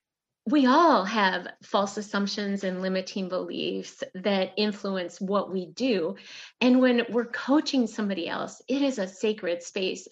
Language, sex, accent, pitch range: English, female, American, 185-240 Hz